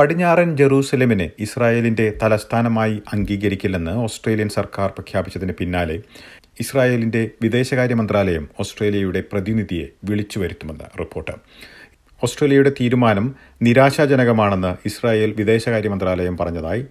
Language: Malayalam